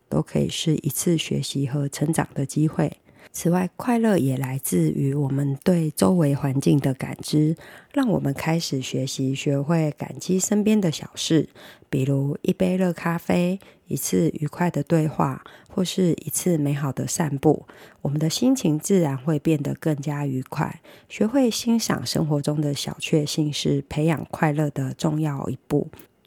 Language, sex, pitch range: Chinese, female, 145-180 Hz